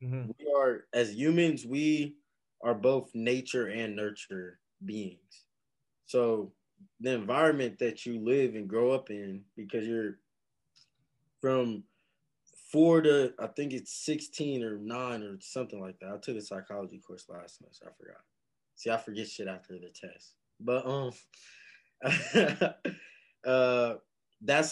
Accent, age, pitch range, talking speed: American, 20-39, 110-135 Hz, 140 wpm